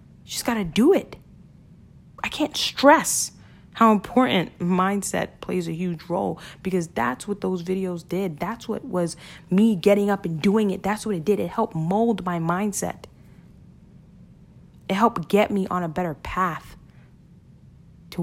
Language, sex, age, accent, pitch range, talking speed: English, female, 20-39, American, 170-210 Hz, 155 wpm